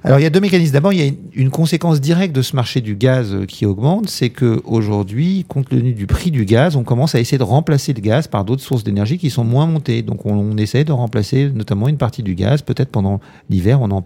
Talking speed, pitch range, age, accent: 255 wpm, 100-140 Hz, 40-59, French